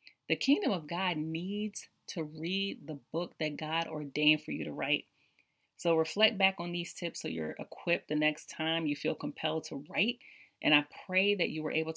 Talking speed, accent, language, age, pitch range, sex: 200 wpm, American, English, 30-49, 150-190 Hz, female